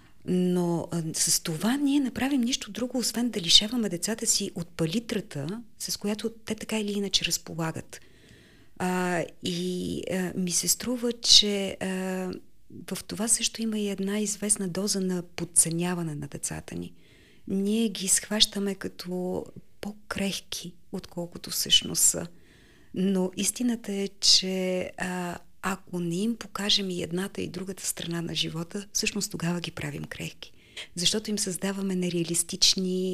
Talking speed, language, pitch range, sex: 140 wpm, Bulgarian, 170-200 Hz, female